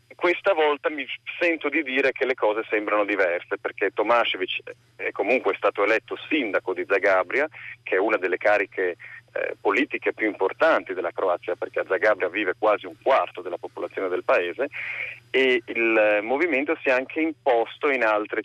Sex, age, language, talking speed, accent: male, 40-59, Italian, 170 wpm, native